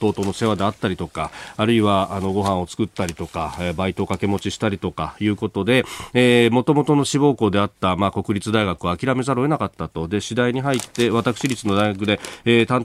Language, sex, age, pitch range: Japanese, male, 40-59, 100-130 Hz